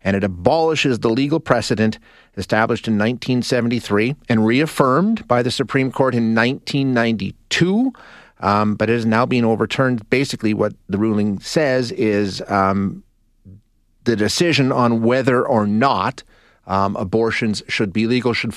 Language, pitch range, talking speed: English, 105-130 Hz, 140 wpm